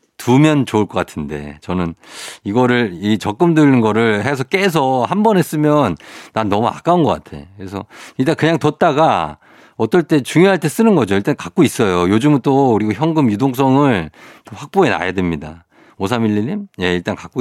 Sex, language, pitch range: male, Korean, 95-140 Hz